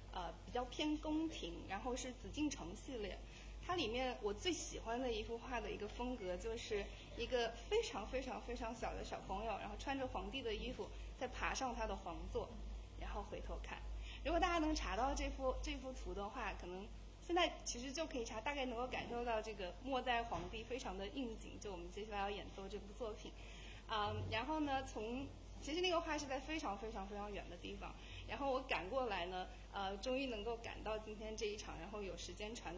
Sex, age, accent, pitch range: female, 20-39, native, 210-275 Hz